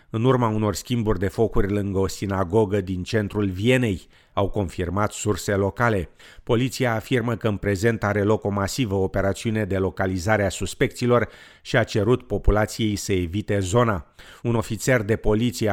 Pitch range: 100-120 Hz